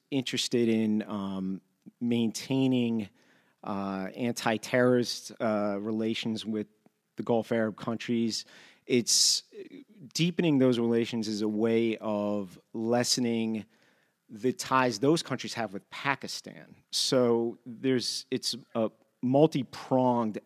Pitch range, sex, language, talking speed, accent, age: 110-130 Hz, male, English, 100 wpm, American, 40-59